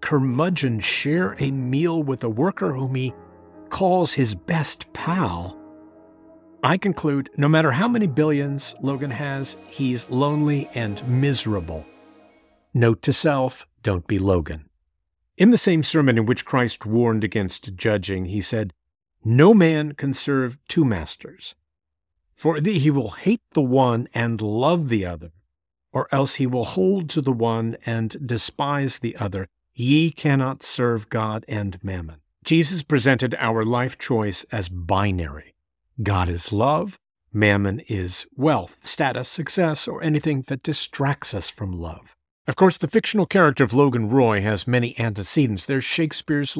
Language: English